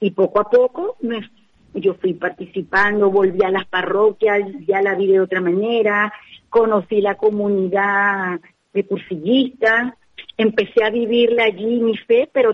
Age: 40-59